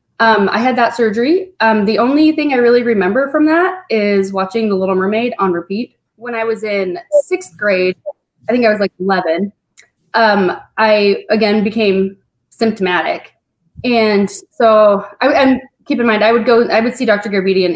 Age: 20-39